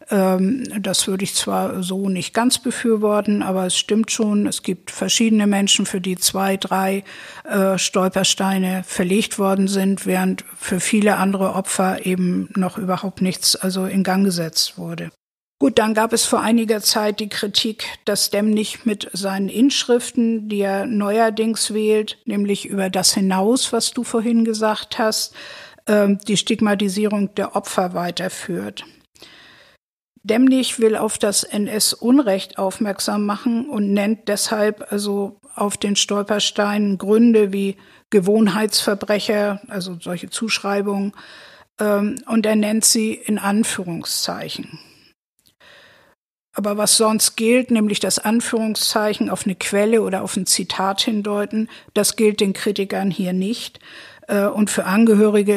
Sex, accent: female, German